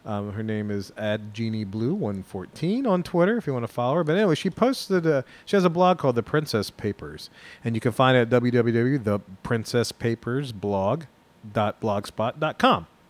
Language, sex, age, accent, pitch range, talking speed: English, male, 30-49, American, 115-155 Hz, 165 wpm